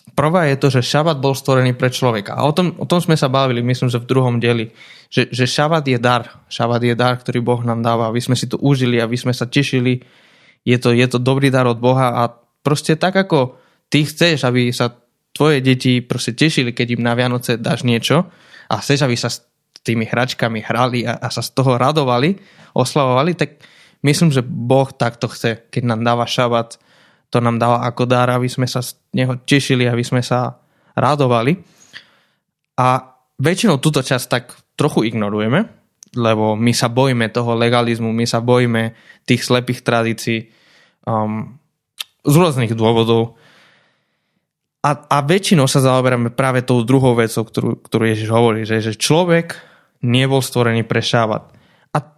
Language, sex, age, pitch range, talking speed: Slovak, male, 20-39, 120-140 Hz, 175 wpm